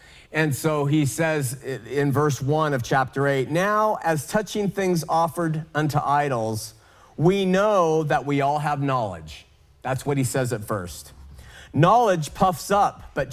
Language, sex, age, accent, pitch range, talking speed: English, male, 40-59, American, 135-185 Hz, 155 wpm